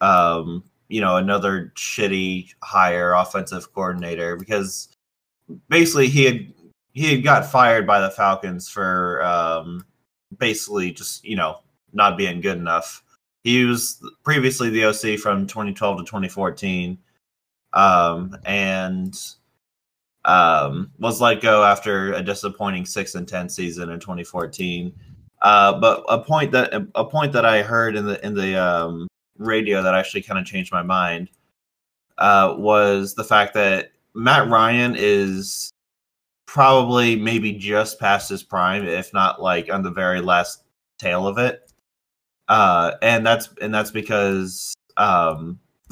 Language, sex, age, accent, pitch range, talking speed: English, male, 20-39, American, 90-110 Hz, 140 wpm